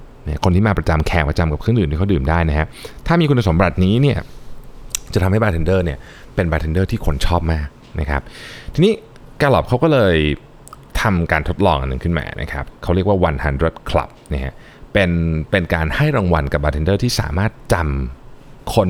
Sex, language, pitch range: male, Thai, 80-115 Hz